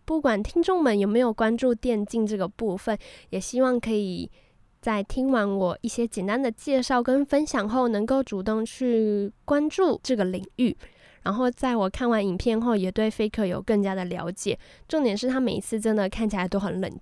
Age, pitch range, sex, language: 10-29, 195-250 Hz, female, Chinese